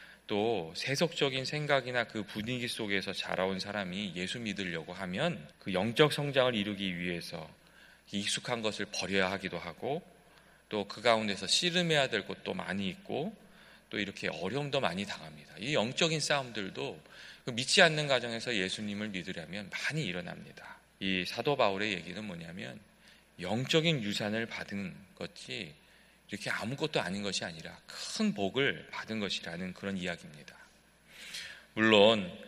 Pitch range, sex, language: 95-145 Hz, male, Korean